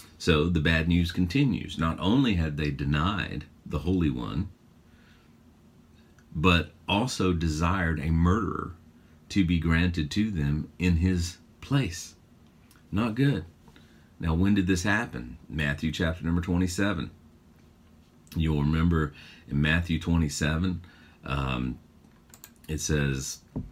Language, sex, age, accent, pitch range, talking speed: English, male, 40-59, American, 75-90 Hz, 115 wpm